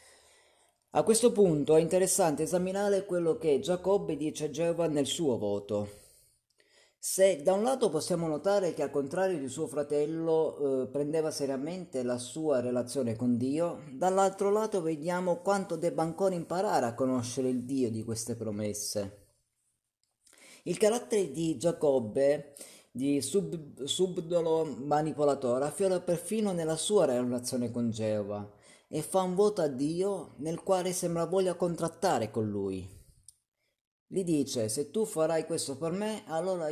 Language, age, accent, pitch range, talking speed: Italian, 30-49, native, 125-180 Hz, 140 wpm